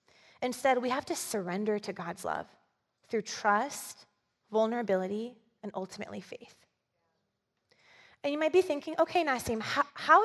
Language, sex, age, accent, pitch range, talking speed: English, female, 20-39, American, 205-255 Hz, 135 wpm